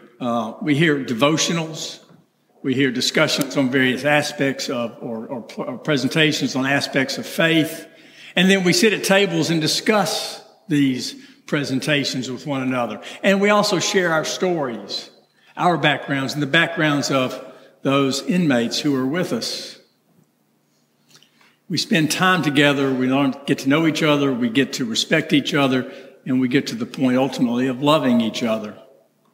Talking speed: 155 wpm